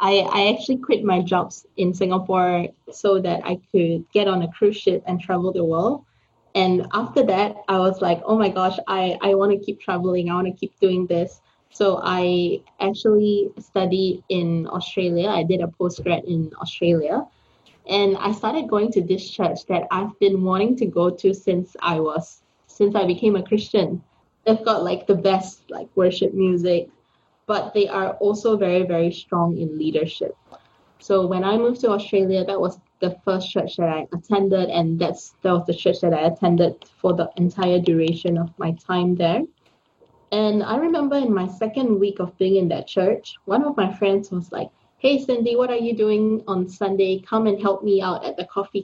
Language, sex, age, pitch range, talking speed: English, female, 20-39, 180-210 Hz, 190 wpm